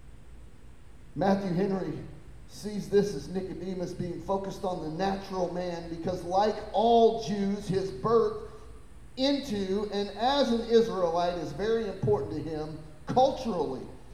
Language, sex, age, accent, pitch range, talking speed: English, male, 40-59, American, 150-210 Hz, 125 wpm